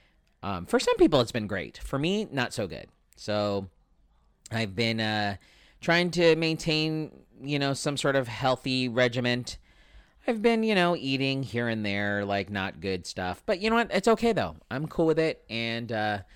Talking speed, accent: 185 wpm, American